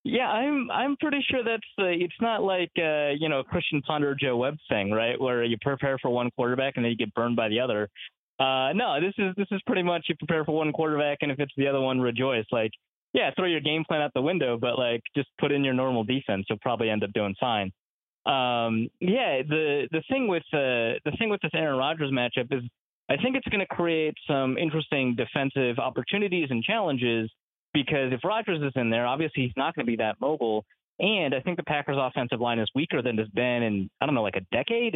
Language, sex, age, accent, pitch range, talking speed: English, male, 20-39, American, 120-160 Hz, 235 wpm